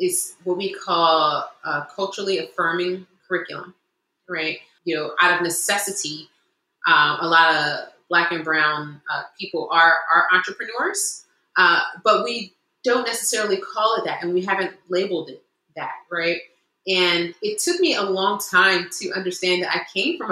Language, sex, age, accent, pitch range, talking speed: English, female, 30-49, American, 165-215 Hz, 160 wpm